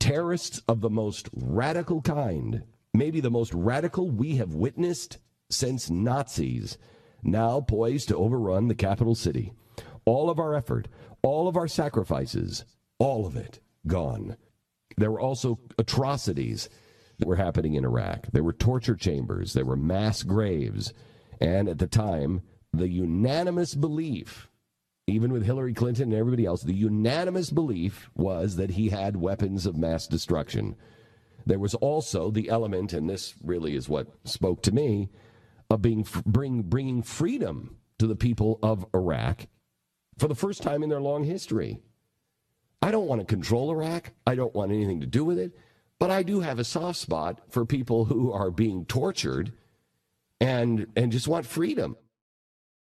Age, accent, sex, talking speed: 50-69, American, male, 160 wpm